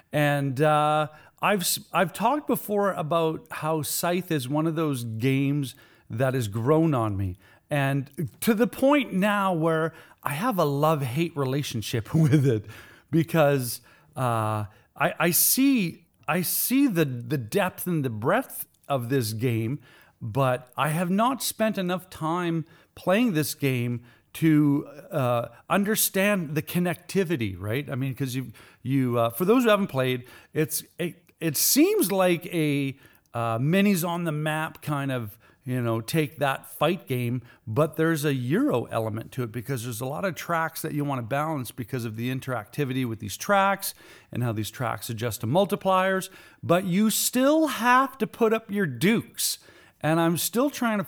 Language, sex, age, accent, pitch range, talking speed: English, male, 40-59, American, 125-180 Hz, 165 wpm